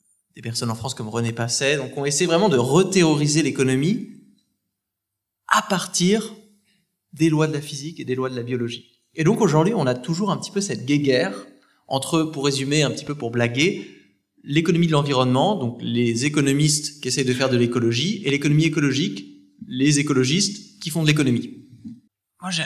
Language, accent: French, French